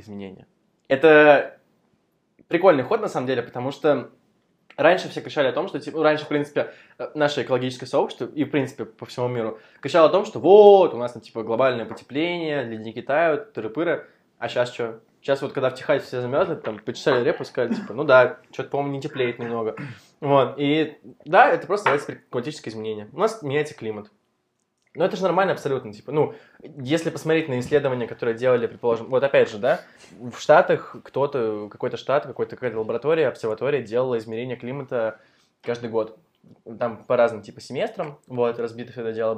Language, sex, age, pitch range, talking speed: Russian, male, 20-39, 115-155 Hz, 180 wpm